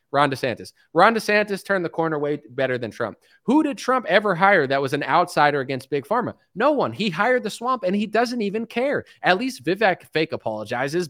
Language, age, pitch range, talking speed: English, 30-49, 140-215 Hz, 210 wpm